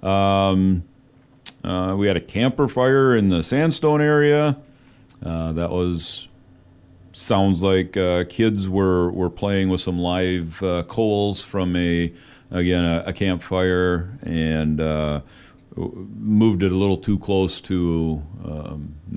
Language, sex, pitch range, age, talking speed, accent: English, male, 80-100 Hz, 40-59, 135 wpm, American